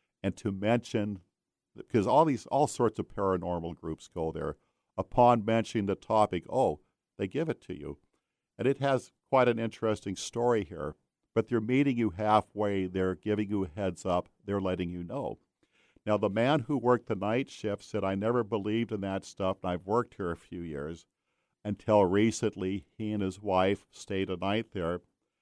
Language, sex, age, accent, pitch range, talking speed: English, male, 50-69, American, 95-110 Hz, 185 wpm